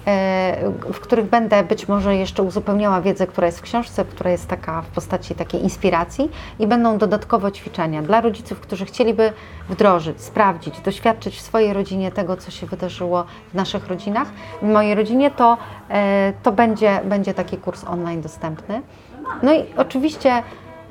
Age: 30-49